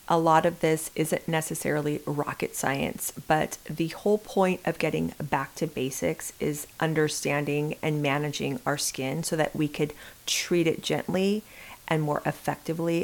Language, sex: English, female